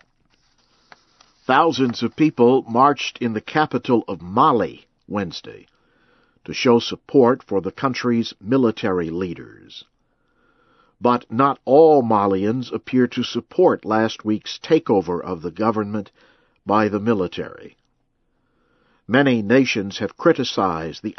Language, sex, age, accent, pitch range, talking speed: English, male, 60-79, American, 105-130 Hz, 110 wpm